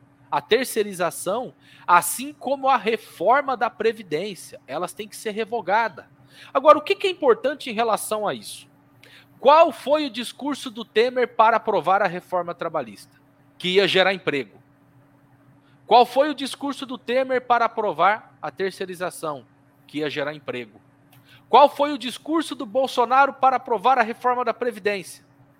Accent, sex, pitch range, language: Brazilian, male, 160-260 Hz, Portuguese